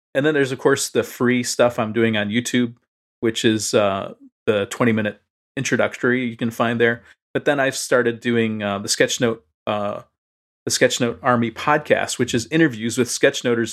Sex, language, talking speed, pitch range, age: male, English, 175 wpm, 110-125 Hz, 40-59